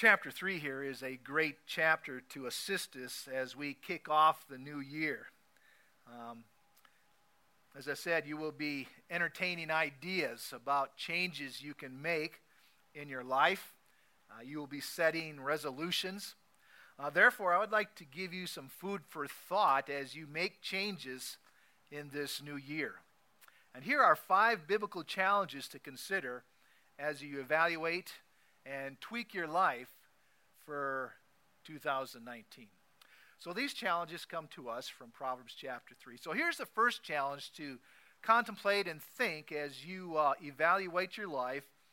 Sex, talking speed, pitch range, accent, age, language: male, 145 wpm, 140-185 Hz, American, 50-69, English